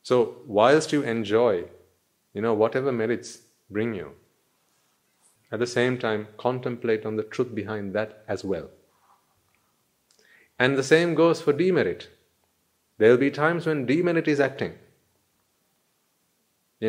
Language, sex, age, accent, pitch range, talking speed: English, male, 30-49, Indian, 110-135 Hz, 130 wpm